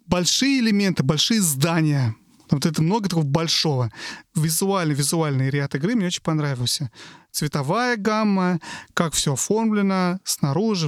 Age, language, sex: 30-49, Russian, male